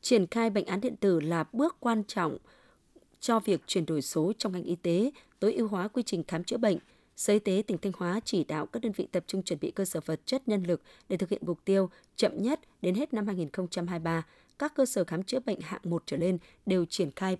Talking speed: 250 wpm